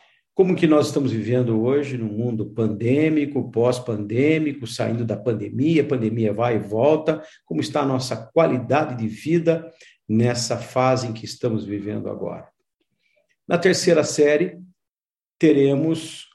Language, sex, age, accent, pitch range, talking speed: Portuguese, male, 50-69, Brazilian, 115-145 Hz, 130 wpm